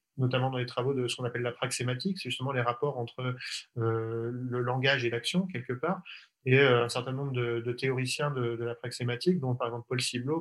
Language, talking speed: French, 225 wpm